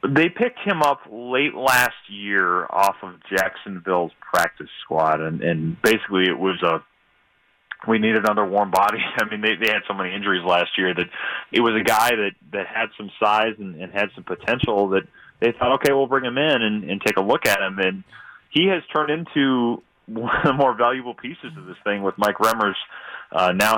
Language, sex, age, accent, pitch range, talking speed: English, male, 30-49, American, 100-130 Hz, 205 wpm